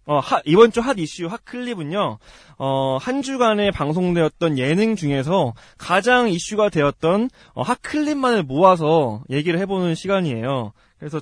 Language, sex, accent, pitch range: Korean, male, native, 140-215 Hz